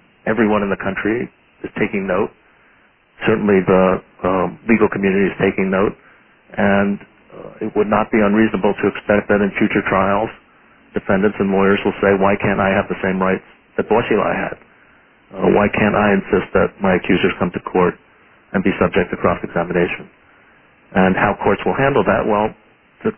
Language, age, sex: English, 50-69, male